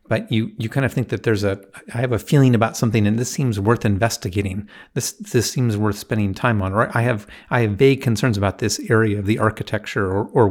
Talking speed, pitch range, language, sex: 240 wpm, 100-120 Hz, English, male